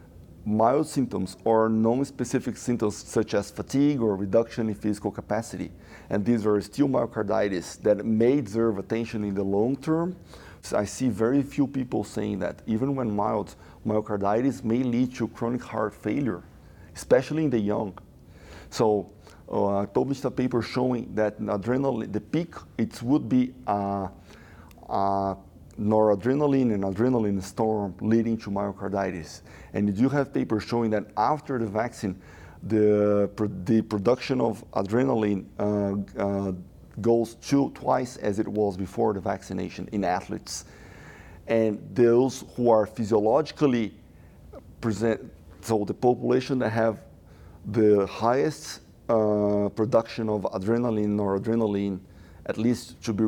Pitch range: 100-120 Hz